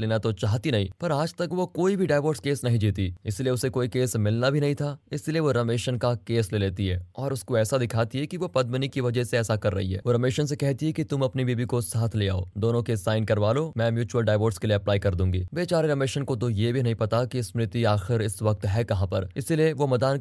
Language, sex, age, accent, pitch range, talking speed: Hindi, male, 20-39, native, 110-140 Hz, 135 wpm